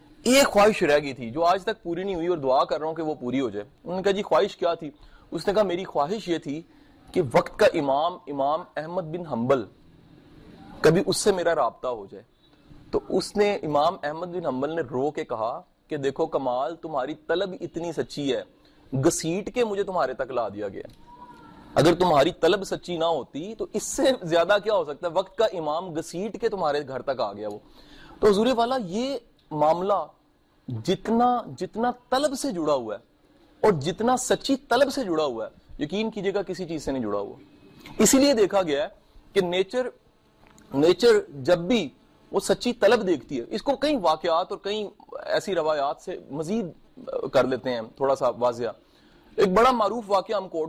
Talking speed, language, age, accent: 160 wpm, English, 30-49, Indian